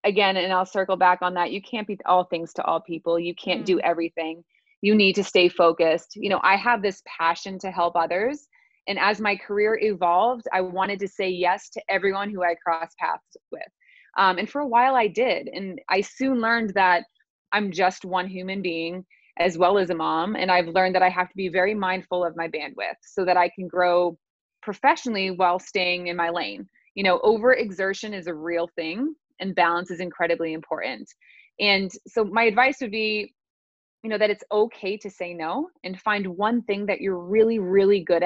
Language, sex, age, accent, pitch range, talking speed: English, female, 30-49, American, 180-215 Hz, 205 wpm